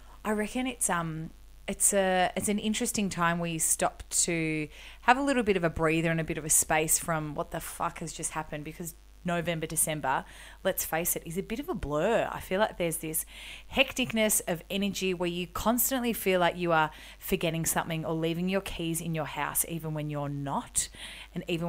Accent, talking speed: Australian, 210 wpm